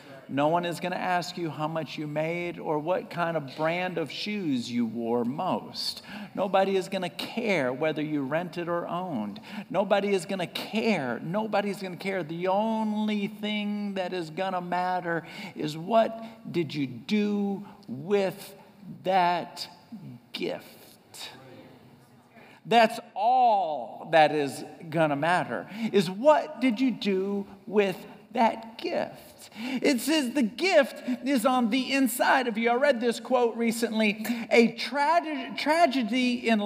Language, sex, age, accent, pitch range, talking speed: English, male, 50-69, American, 170-230 Hz, 150 wpm